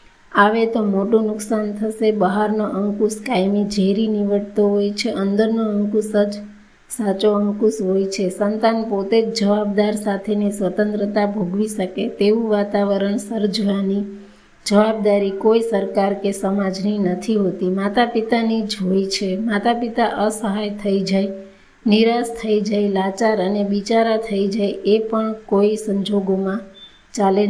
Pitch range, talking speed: 195-220 Hz, 110 wpm